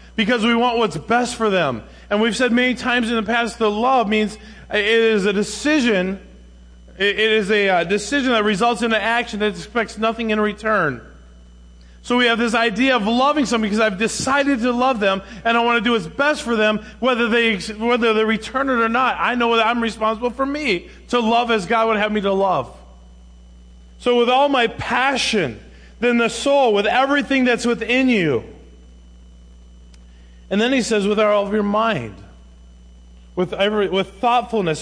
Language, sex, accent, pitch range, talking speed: English, male, American, 145-225 Hz, 190 wpm